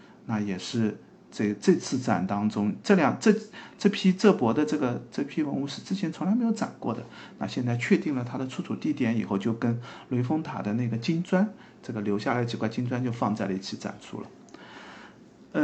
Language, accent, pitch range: Chinese, native, 120-190 Hz